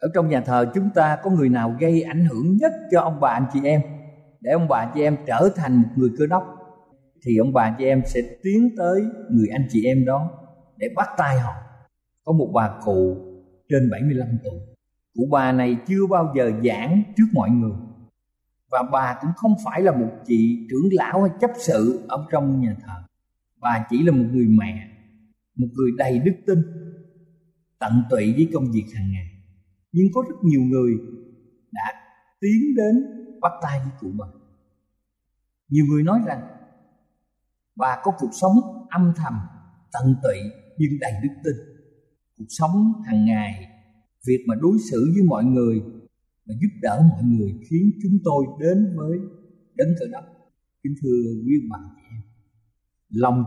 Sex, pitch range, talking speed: male, 115-175 Hz, 175 wpm